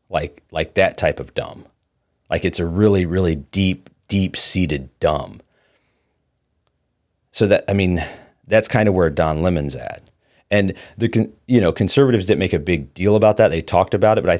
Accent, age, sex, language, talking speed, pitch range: American, 30-49, male, English, 185 wpm, 75-110 Hz